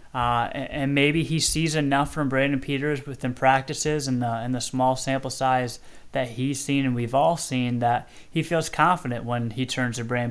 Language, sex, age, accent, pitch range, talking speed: English, male, 20-39, American, 120-140 Hz, 190 wpm